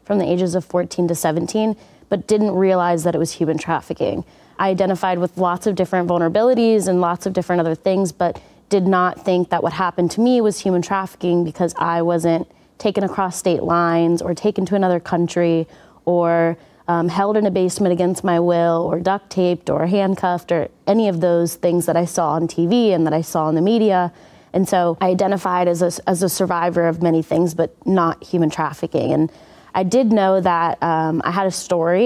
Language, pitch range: English, 165-190 Hz